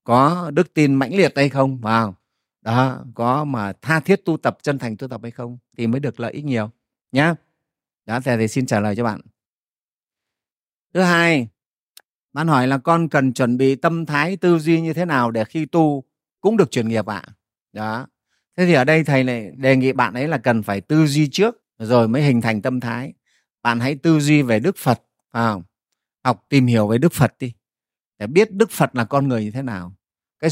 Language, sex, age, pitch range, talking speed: Vietnamese, male, 30-49, 115-155 Hz, 220 wpm